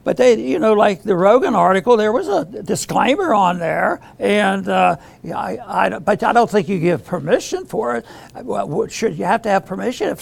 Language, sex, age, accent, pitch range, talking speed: English, male, 60-79, American, 200-240 Hz, 190 wpm